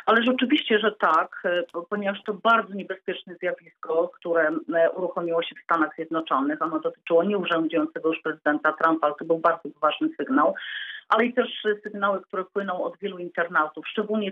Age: 40-59